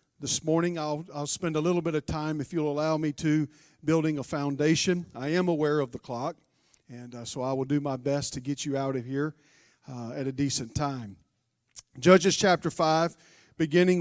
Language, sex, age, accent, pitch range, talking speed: English, male, 40-59, American, 150-205 Hz, 200 wpm